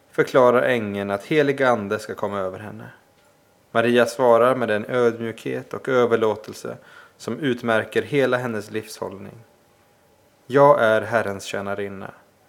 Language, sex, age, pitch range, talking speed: Swedish, male, 20-39, 105-120 Hz, 120 wpm